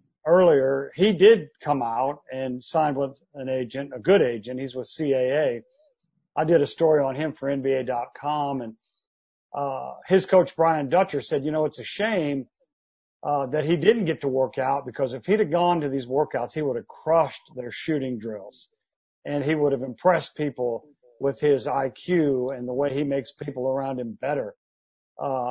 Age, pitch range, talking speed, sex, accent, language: 50-69, 135-175 Hz, 185 wpm, male, American, English